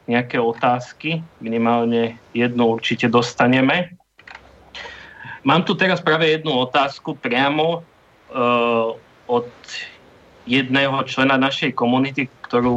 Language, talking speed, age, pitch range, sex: English, 95 wpm, 30-49, 125-150 Hz, male